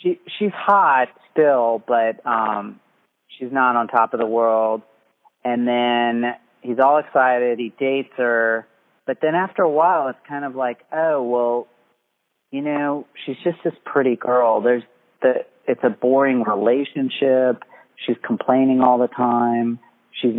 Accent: American